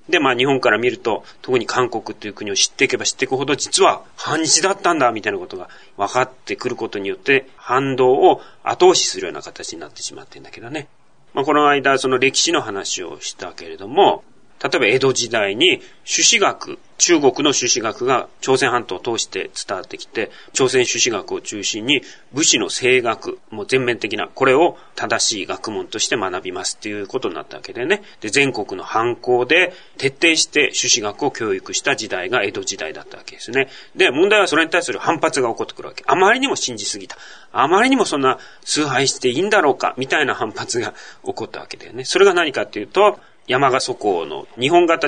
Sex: male